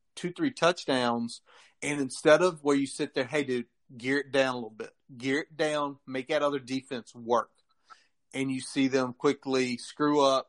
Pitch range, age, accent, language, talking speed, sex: 125-145 Hz, 30-49, American, English, 195 wpm, male